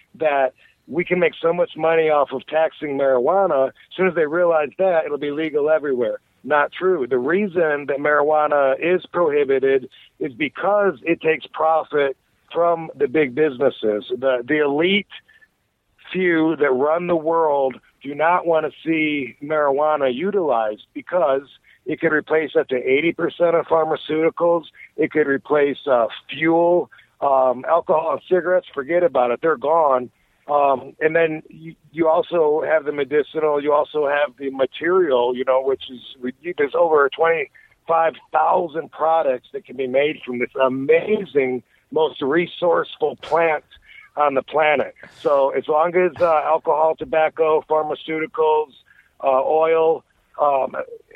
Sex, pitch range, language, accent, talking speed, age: male, 140-175 Hz, English, American, 145 wpm, 60-79